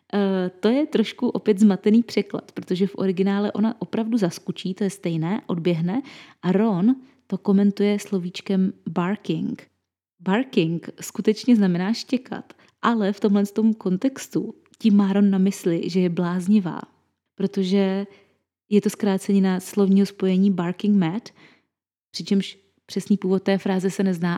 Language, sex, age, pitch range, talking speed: Czech, female, 20-39, 175-205 Hz, 135 wpm